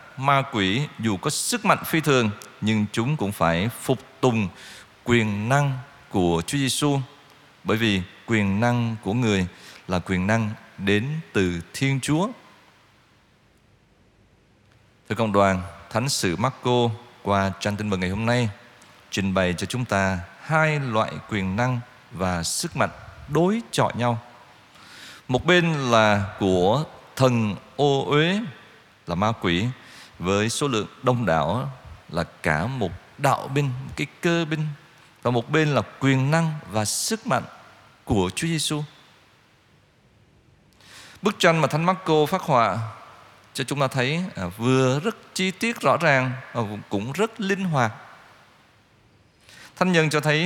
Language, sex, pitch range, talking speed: Vietnamese, male, 105-145 Hz, 150 wpm